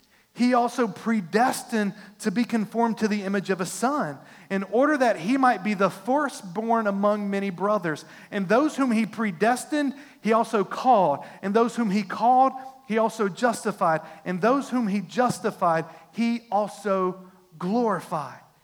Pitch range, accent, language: 200-280 Hz, American, English